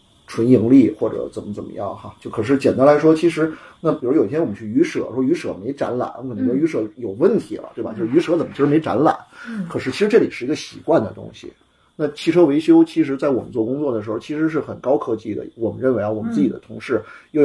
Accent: native